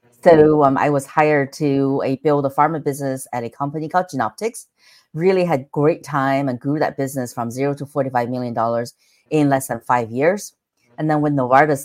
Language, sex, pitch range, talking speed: English, female, 120-145 Hz, 190 wpm